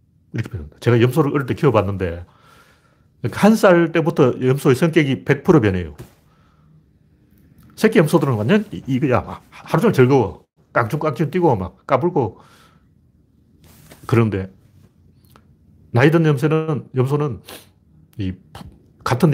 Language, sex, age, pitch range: Korean, male, 40-59, 105-160 Hz